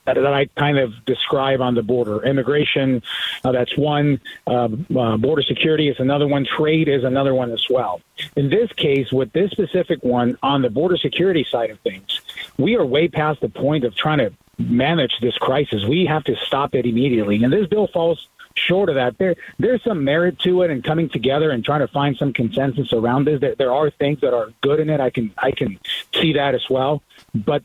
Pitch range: 125-155 Hz